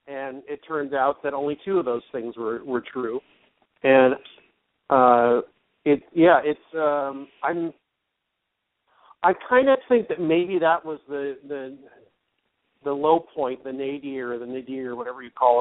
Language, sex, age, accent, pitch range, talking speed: English, male, 50-69, American, 125-155 Hz, 155 wpm